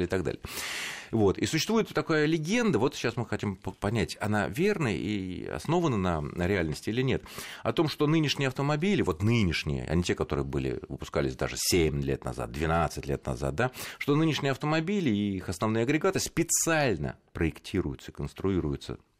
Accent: native